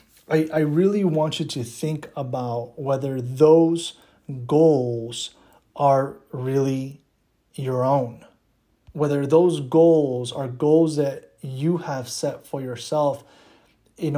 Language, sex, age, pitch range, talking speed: English, male, 30-49, 135-155 Hz, 110 wpm